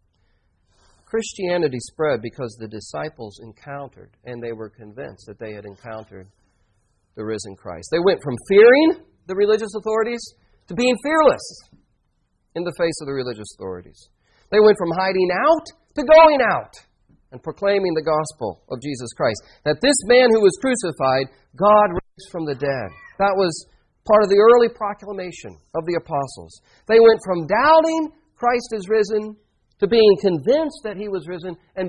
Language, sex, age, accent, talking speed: English, male, 40-59, American, 160 wpm